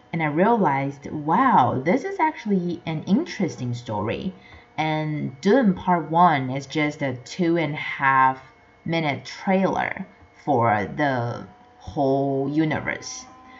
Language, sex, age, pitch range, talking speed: English, female, 30-49, 135-170 Hz, 120 wpm